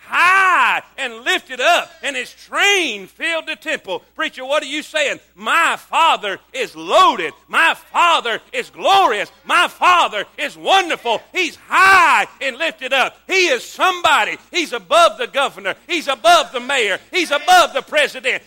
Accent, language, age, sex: American, English, 50-69, male